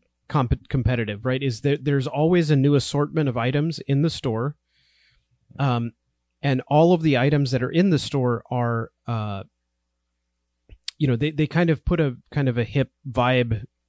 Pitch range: 115-140 Hz